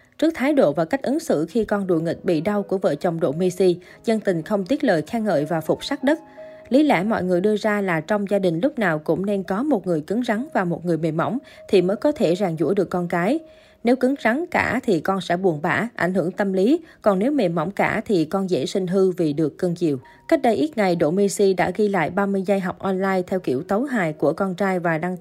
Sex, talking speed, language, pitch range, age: female, 265 wpm, Vietnamese, 180-230 Hz, 20-39